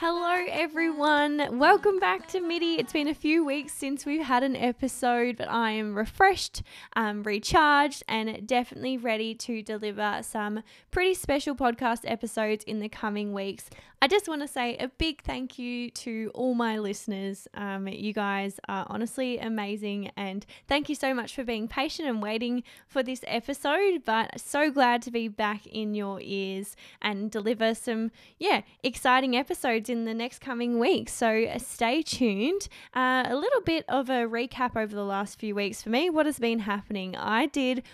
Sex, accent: female, Australian